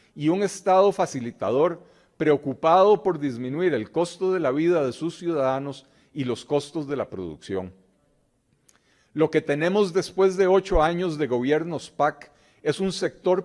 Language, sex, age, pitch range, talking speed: Spanish, male, 40-59, 130-170 Hz, 150 wpm